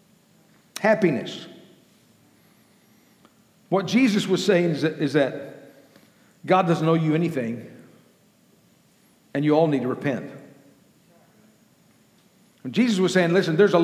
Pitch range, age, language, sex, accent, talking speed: 170-215 Hz, 60-79, English, male, American, 115 wpm